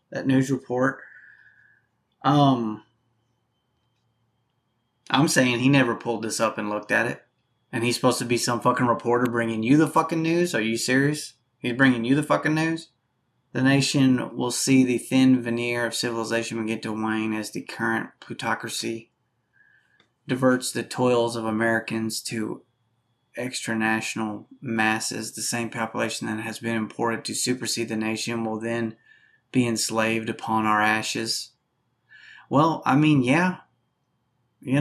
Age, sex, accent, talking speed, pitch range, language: 20-39, male, American, 145 wpm, 115-130 Hz, English